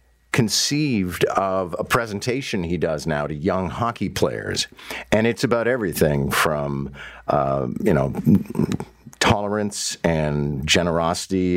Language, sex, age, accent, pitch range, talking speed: English, male, 50-69, American, 75-105 Hz, 115 wpm